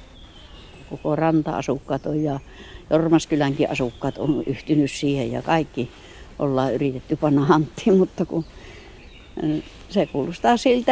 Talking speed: 105 wpm